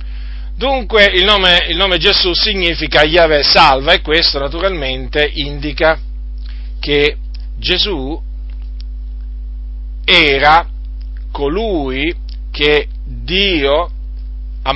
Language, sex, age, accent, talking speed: Italian, male, 40-59, native, 75 wpm